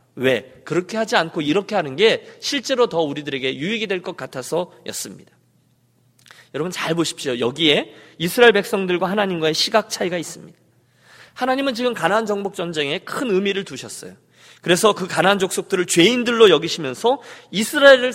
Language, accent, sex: Korean, native, male